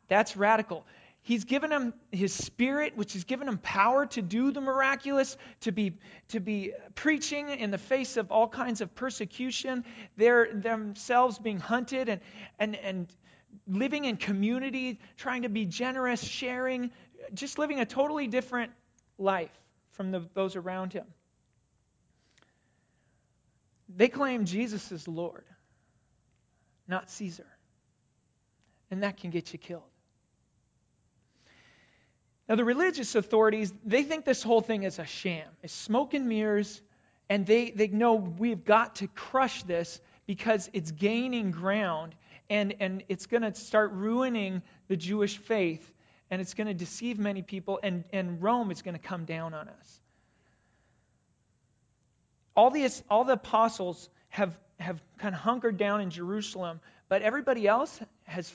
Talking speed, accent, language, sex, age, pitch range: 140 wpm, American, English, male, 40-59, 185-240 Hz